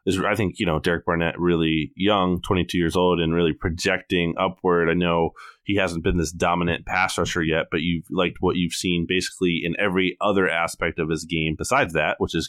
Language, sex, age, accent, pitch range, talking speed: English, male, 30-49, American, 85-95 Hz, 205 wpm